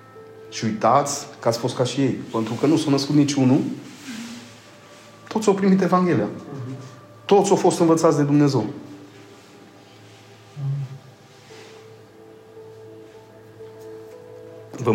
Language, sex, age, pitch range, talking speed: Romanian, male, 30-49, 110-160 Hz, 105 wpm